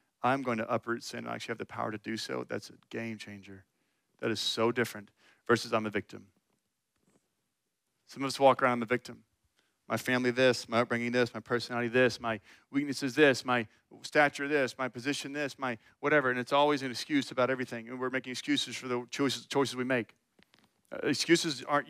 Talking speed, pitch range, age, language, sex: 200 wpm, 120-145 Hz, 40-59, English, male